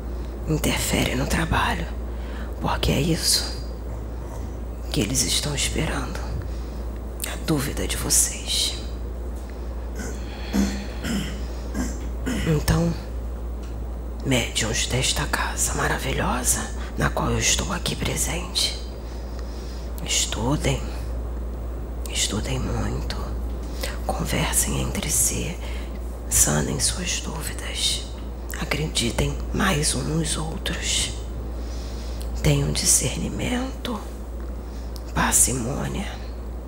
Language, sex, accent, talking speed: Portuguese, female, Brazilian, 70 wpm